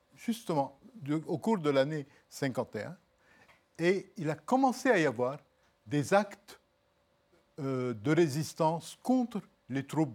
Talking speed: 120 wpm